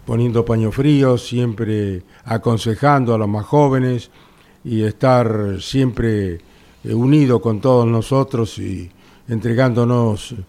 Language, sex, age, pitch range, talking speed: Spanish, male, 50-69, 110-135 Hz, 105 wpm